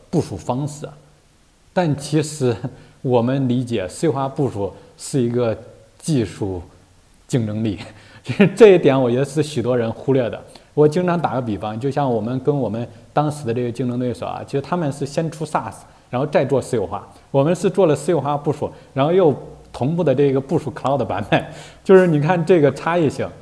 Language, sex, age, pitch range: Chinese, male, 20-39, 125-170 Hz